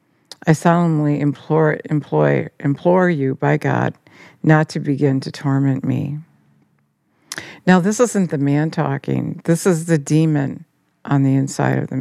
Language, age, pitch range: English, 50-69, 140-160 Hz